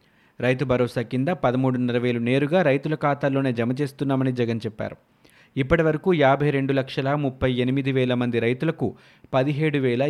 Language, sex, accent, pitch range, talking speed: Telugu, male, native, 125-150 Hz, 145 wpm